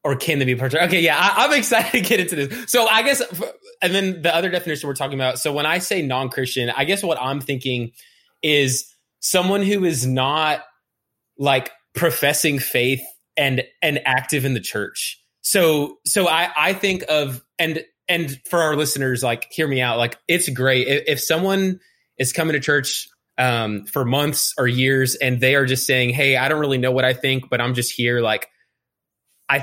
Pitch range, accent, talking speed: 120-150 Hz, American, 200 wpm